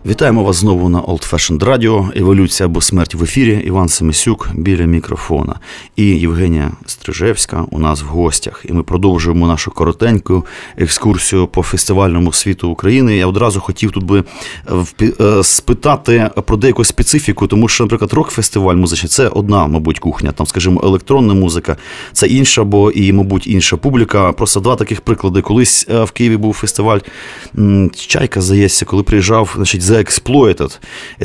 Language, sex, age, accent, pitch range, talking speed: Ukrainian, male, 30-49, native, 95-115 Hz, 150 wpm